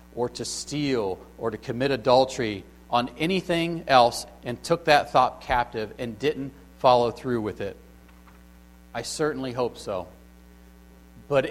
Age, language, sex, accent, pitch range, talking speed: 40-59, English, male, American, 115-165 Hz, 135 wpm